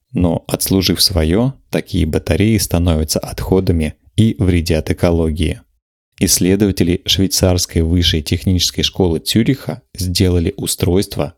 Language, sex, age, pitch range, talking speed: Russian, male, 20-39, 85-100 Hz, 95 wpm